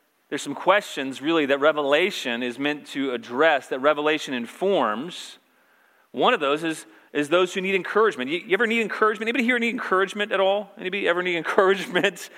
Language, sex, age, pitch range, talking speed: English, male, 40-59, 150-205 Hz, 175 wpm